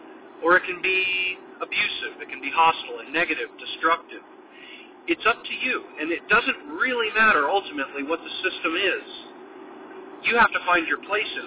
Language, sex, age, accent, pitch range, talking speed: English, male, 40-59, American, 315-370 Hz, 175 wpm